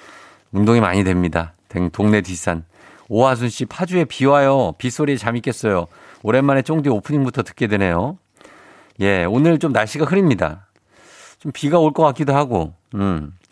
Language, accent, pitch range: Korean, native, 100-140 Hz